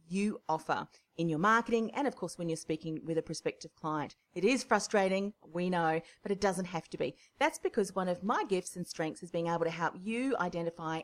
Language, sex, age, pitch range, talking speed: English, female, 40-59, 160-215 Hz, 225 wpm